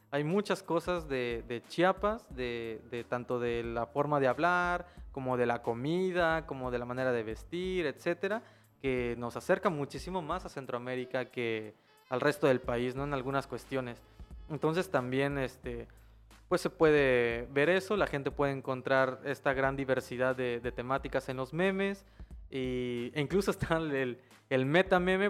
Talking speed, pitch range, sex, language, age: 165 wpm, 125-170 Hz, male, Spanish, 20-39